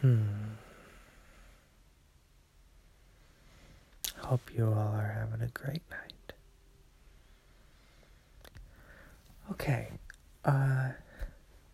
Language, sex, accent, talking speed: English, male, American, 55 wpm